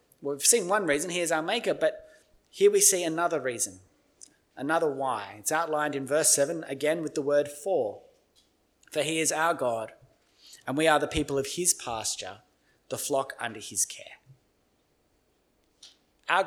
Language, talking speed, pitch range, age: English, 165 wpm, 145-180 Hz, 30-49